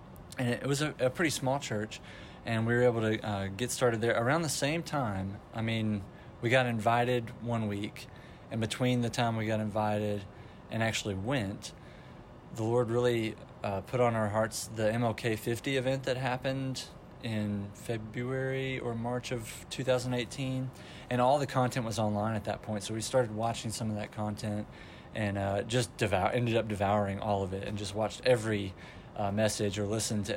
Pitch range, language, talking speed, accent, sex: 105-125 Hz, English, 180 wpm, American, male